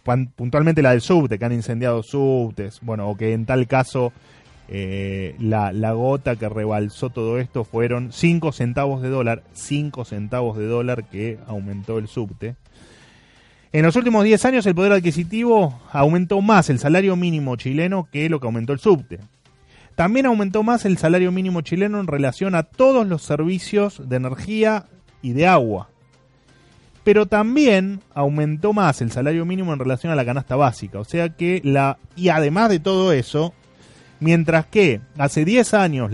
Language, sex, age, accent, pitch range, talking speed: Spanish, male, 20-39, Argentinian, 120-170 Hz, 165 wpm